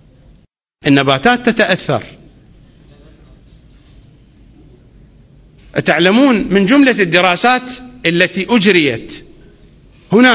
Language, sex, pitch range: English, male, 160-230 Hz